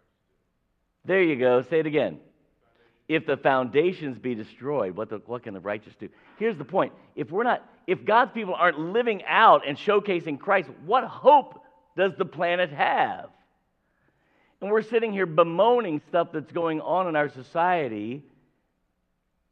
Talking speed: 155 wpm